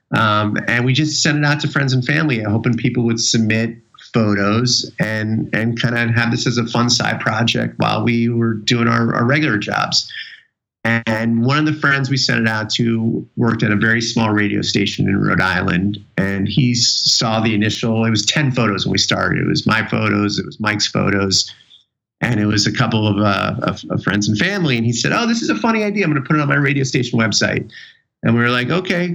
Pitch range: 110-135 Hz